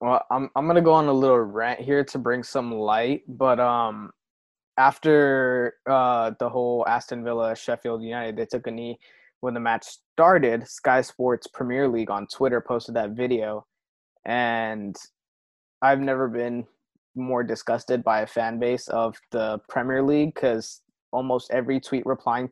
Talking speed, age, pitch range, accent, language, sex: 165 wpm, 20-39, 120-145 Hz, American, English, male